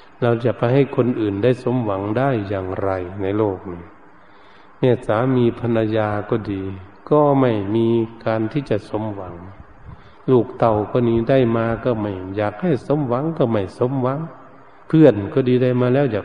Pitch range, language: 100-125 Hz, Thai